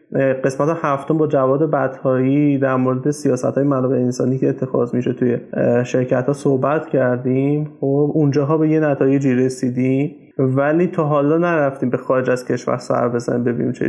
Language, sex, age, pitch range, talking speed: Persian, male, 20-39, 135-155 Hz, 160 wpm